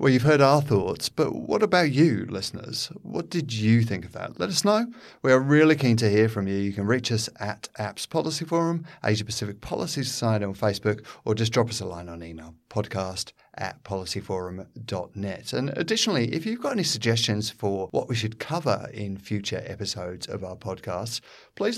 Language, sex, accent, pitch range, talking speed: English, male, British, 105-140 Hz, 195 wpm